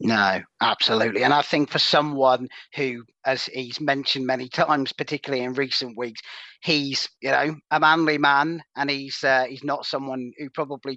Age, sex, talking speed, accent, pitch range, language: 40-59, male, 170 wpm, British, 120-145 Hz, English